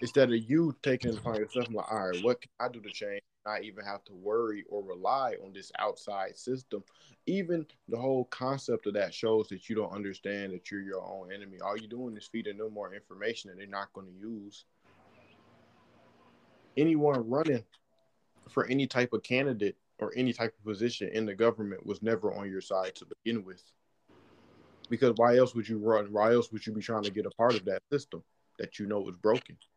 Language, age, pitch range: English, 20-39, 105-125 Hz